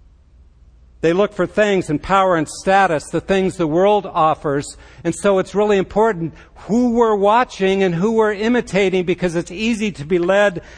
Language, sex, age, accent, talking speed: English, male, 60-79, American, 175 wpm